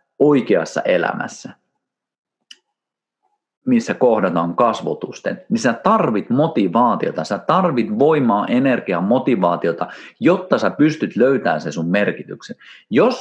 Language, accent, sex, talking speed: Finnish, native, male, 100 wpm